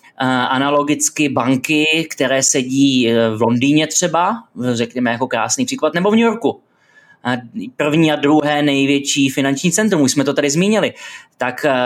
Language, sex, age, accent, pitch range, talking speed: Czech, male, 20-39, native, 130-145 Hz, 135 wpm